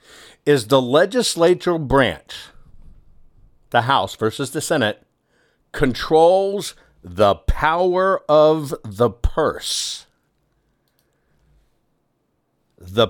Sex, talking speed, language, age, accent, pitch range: male, 75 wpm, English, 60-79, American, 115-165 Hz